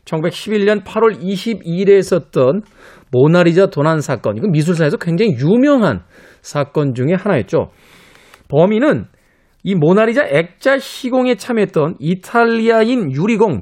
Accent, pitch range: native, 150-220 Hz